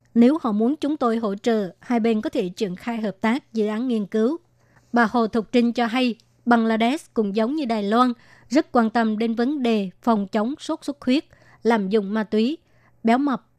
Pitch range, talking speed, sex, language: 220-245 Hz, 210 wpm, male, Vietnamese